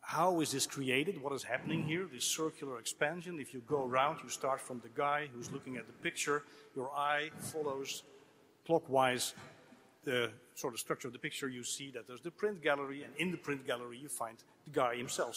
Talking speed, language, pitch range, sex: 205 wpm, Italian, 130-165 Hz, male